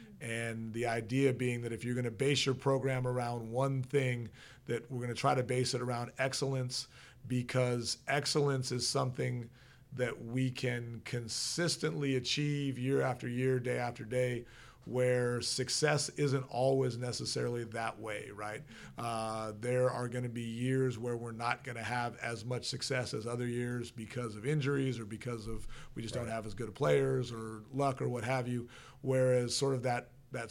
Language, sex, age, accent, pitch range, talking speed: English, male, 40-59, American, 115-130 Hz, 180 wpm